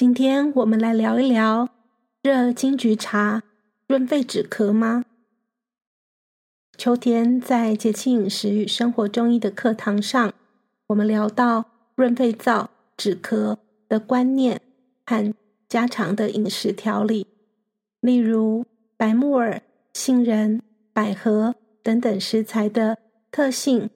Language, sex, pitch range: Chinese, female, 215-245 Hz